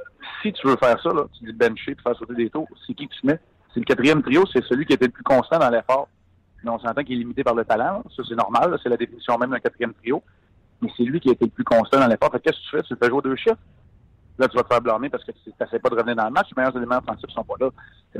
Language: French